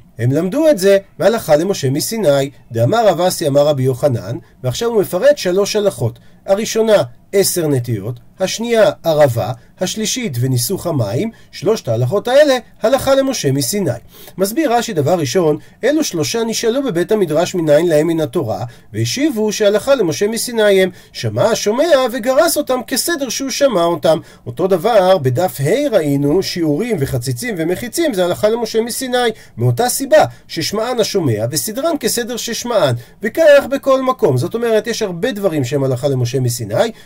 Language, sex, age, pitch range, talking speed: Hebrew, male, 40-59, 150-225 Hz, 145 wpm